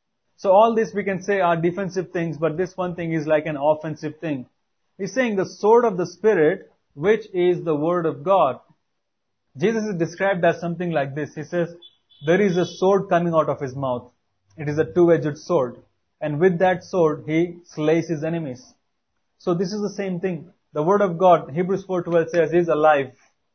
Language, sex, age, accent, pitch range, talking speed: English, male, 30-49, Indian, 155-190 Hz, 195 wpm